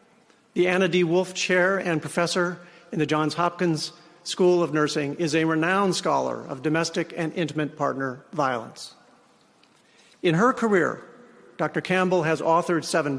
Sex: male